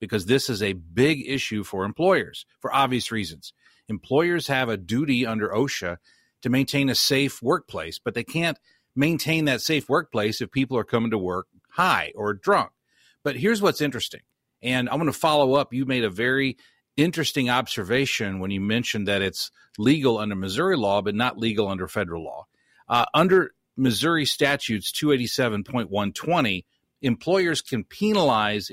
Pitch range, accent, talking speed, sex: 105-140 Hz, American, 160 wpm, male